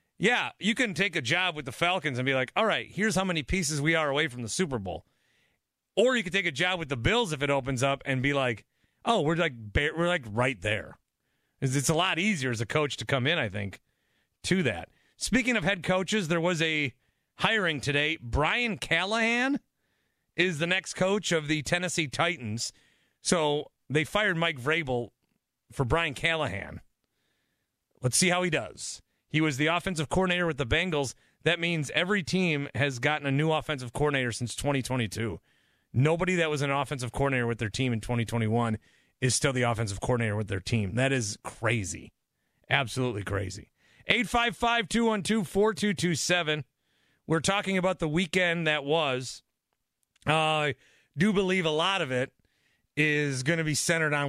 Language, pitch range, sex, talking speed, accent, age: English, 125-175 Hz, male, 175 wpm, American, 30-49